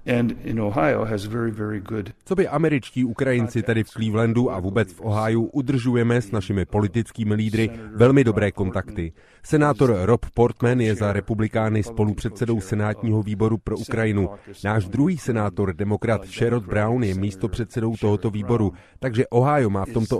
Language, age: Czech, 30-49